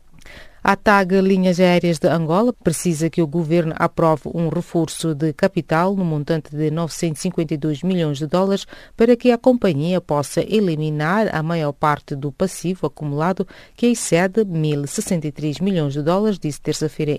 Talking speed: 145 wpm